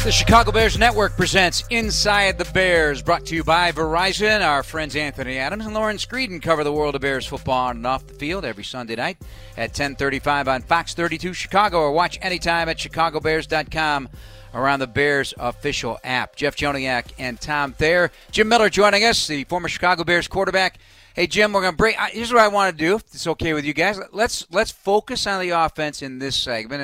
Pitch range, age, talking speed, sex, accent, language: 140-180 Hz, 40-59, 205 wpm, male, American, English